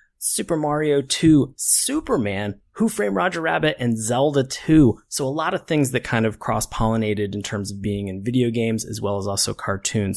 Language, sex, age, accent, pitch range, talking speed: English, male, 20-39, American, 110-140 Hz, 190 wpm